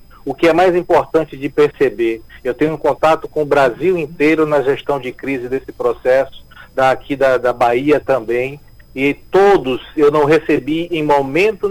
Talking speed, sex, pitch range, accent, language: 165 wpm, male, 140-170 Hz, Brazilian, Portuguese